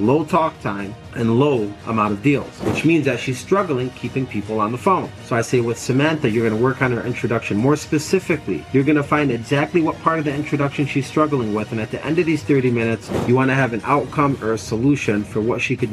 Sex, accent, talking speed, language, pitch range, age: male, American, 235 wpm, English, 115-150 Hz, 30-49